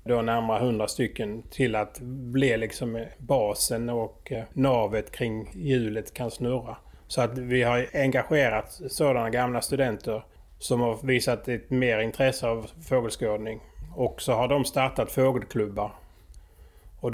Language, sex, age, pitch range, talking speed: Swedish, male, 30-49, 110-130 Hz, 135 wpm